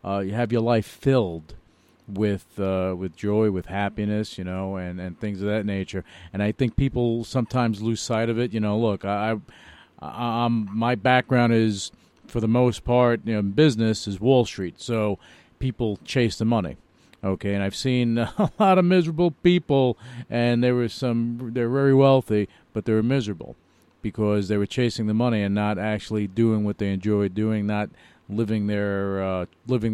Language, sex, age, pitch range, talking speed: English, male, 40-59, 100-125 Hz, 185 wpm